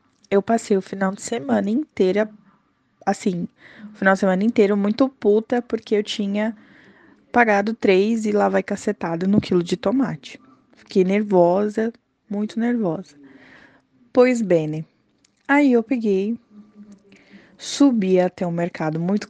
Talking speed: 130 wpm